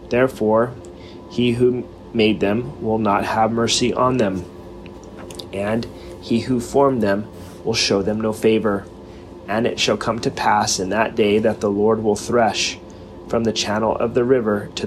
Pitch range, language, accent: 90-115 Hz, English, American